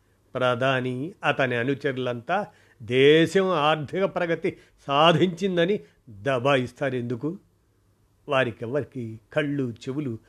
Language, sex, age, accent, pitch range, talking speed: Telugu, male, 50-69, native, 110-145 Hz, 75 wpm